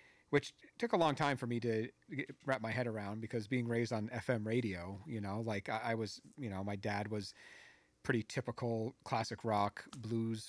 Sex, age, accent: male, 40-59, American